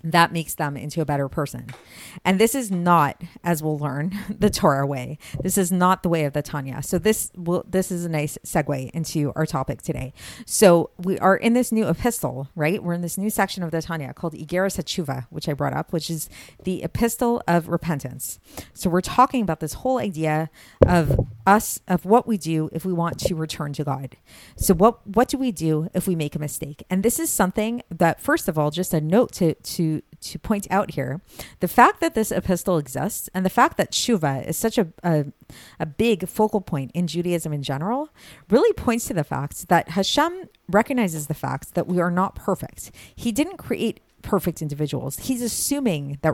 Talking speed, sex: 205 wpm, female